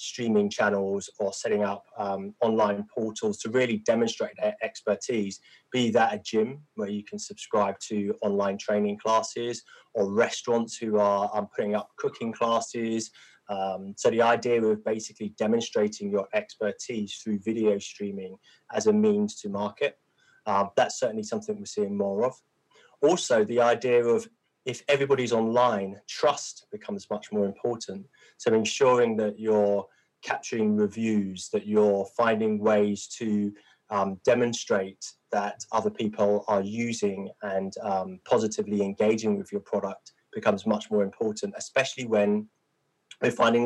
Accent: British